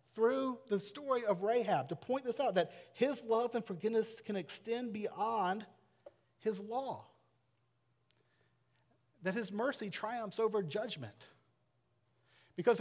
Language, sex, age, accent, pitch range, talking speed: English, male, 40-59, American, 120-205 Hz, 120 wpm